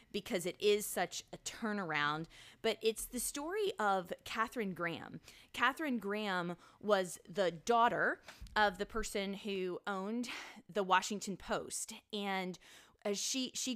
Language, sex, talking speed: English, female, 130 wpm